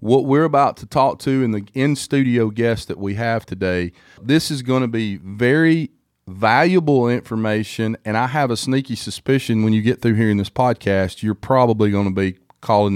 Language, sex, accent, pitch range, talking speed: English, male, American, 115-160 Hz, 190 wpm